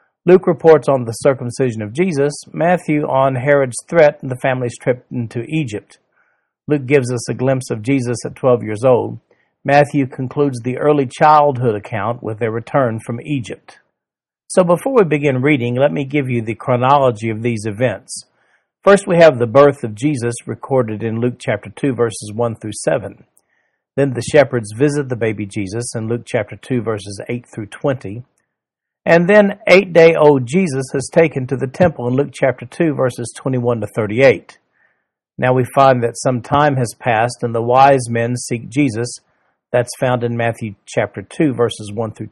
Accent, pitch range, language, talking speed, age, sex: American, 120-145 Hz, English, 175 wpm, 50-69, male